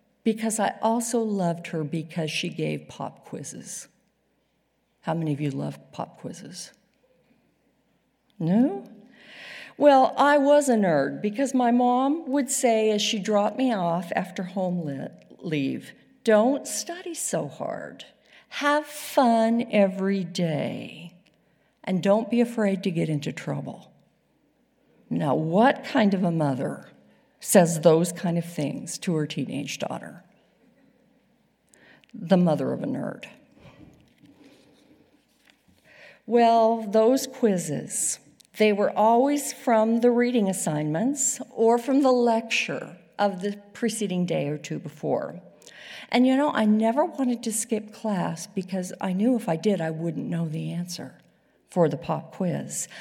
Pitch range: 175-245 Hz